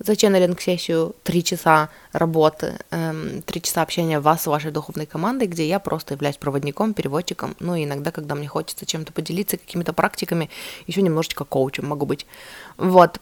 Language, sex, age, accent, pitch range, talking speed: Russian, female, 20-39, native, 155-185 Hz, 155 wpm